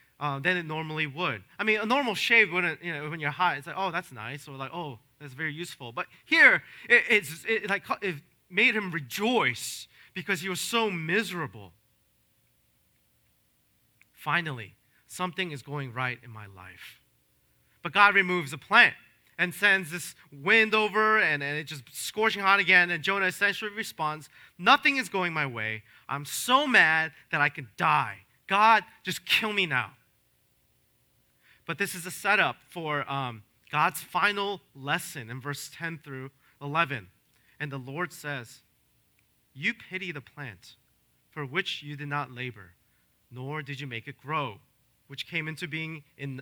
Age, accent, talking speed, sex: 30-49, American, 165 wpm, male